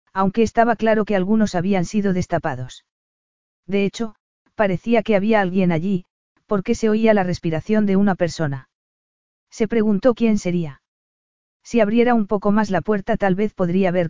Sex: female